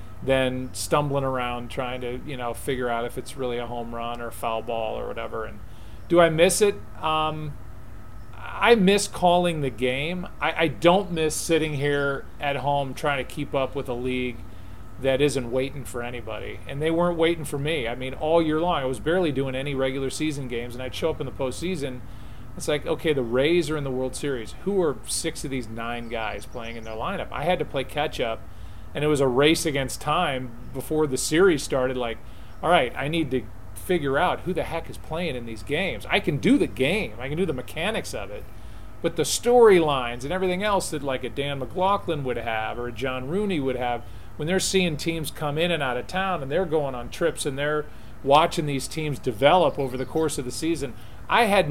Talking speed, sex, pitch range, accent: 225 wpm, male, 120-160 Hz, American